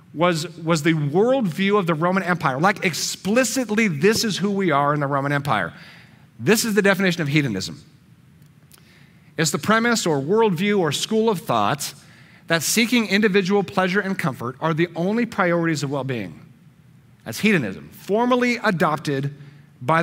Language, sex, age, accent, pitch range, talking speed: English, male, 40-59, American, 145-200 Hz, 155 wpm